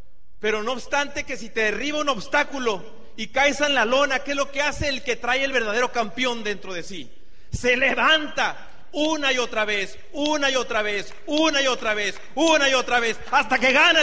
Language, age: Spanish, 40-59